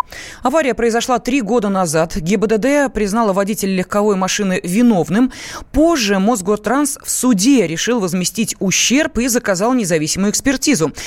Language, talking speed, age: Russian, 120 wpm, 20-39